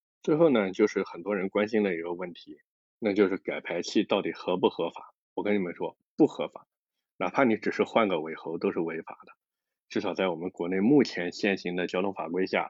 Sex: male